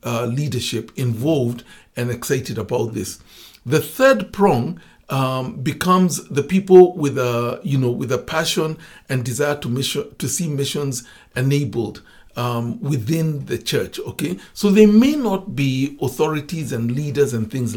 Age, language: 60-79, English